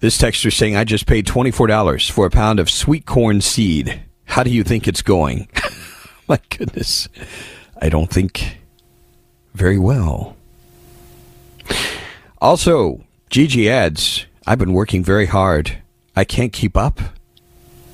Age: 40-59